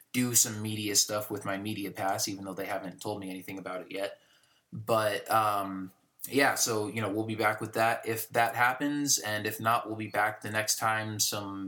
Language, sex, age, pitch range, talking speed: English, male, 20-39, 100-110 Hz, 215 wpm